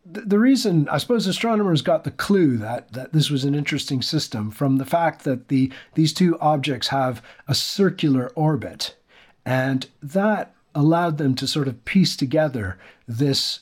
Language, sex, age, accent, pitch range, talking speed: English, male, 50-69, American, 130-160 Hz, 165 wpm